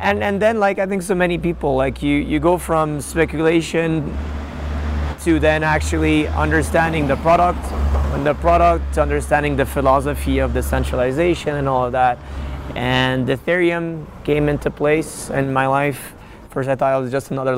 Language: English